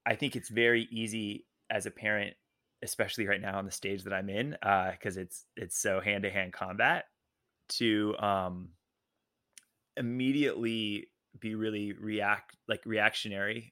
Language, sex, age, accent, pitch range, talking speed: English, male, 20-39, American, 100-115 Hz, 150 wpm